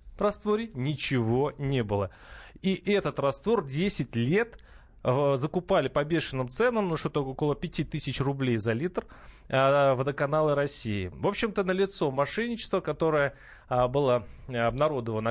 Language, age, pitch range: Russian, 30-49, 120-160 Hz